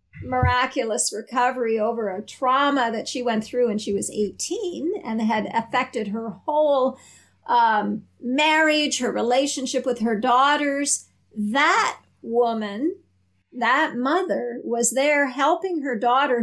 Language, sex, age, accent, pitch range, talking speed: English, female, 50-69, American, 225-285 Hz, 125 wpm